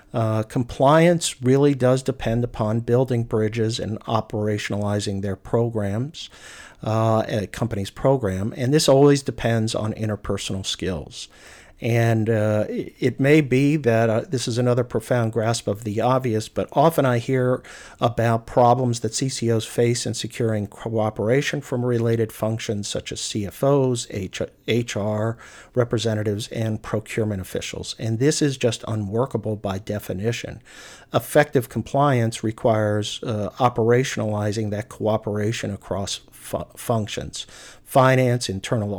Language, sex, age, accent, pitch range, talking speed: English, male, 50-69, American, 105-125 Hz, 125 wpm